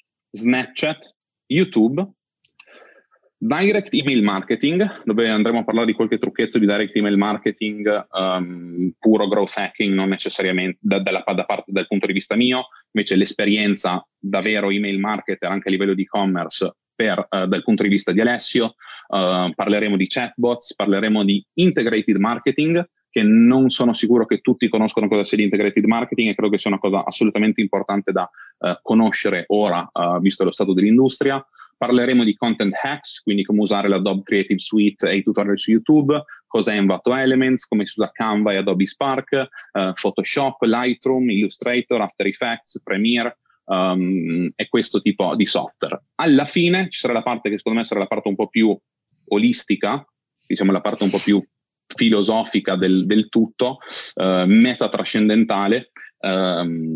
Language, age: Italian, 30-49